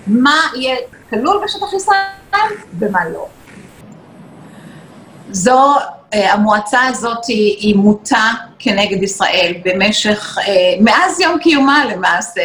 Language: Hebrew